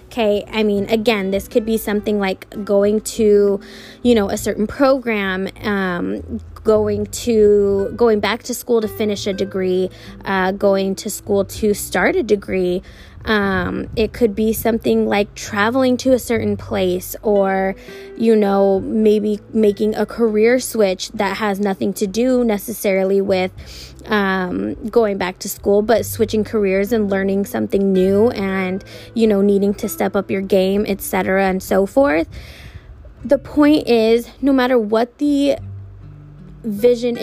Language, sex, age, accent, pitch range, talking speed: English, female, 20-39, American, 195-235 Hz, 150 wpm